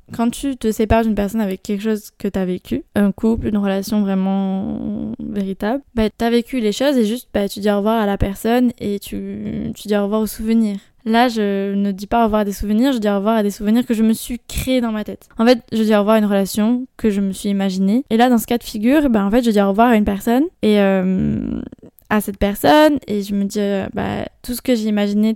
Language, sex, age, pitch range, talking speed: French, female, 10-29, 200-235 Hz, 270 wpm